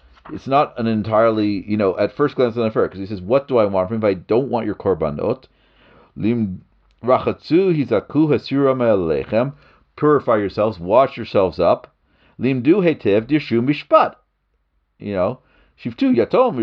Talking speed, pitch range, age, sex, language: 125 wpm, 90-145 Hz, 50-69, male, English